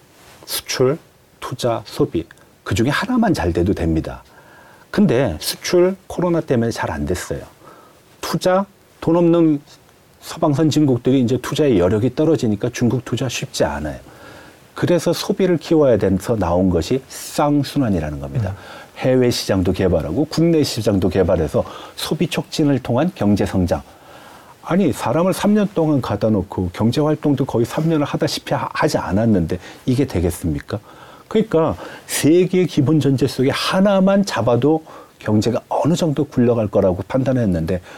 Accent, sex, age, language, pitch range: native, male, 40-59, Korean, 100-155 Hz